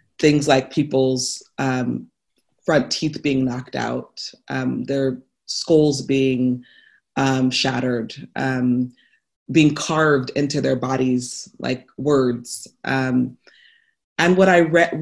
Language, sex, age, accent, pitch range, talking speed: English, female, 20-39, American, 130-155 Hz, 110 wpm